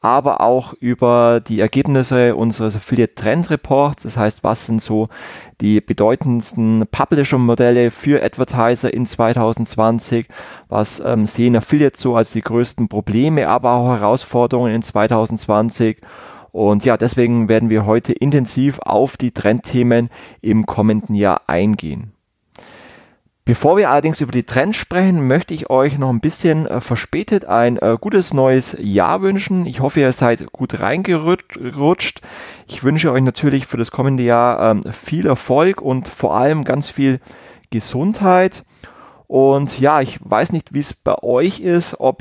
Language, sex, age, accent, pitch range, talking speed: German, male, 20-39, German, 115-140 Hz, 145 wpm